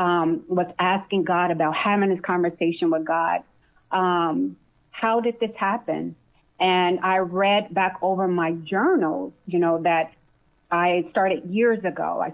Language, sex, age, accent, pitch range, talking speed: English, female, 30-49, American, 175-220 Hz, 145 wpm